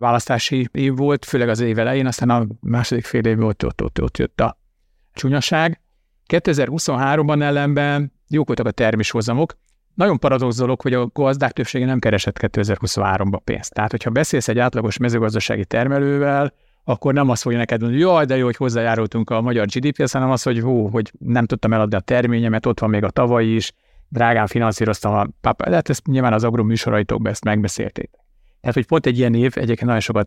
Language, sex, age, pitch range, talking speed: Hungarian, male, 50-69, 110-135 Hz, 180 wpm